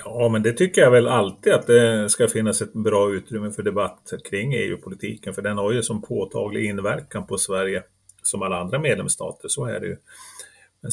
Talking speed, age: 200 wpm, 30-49